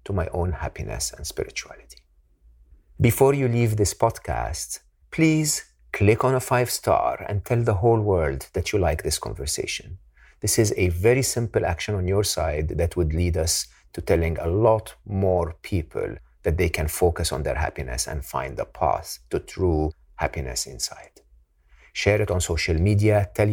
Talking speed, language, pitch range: 170 wpm, English, 75-105 Hz